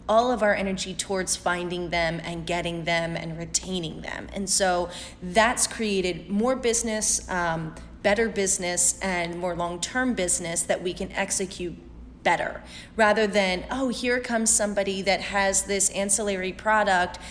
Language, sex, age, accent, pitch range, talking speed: English, female, 30-49, American, 180-220 Hz, 145 wpm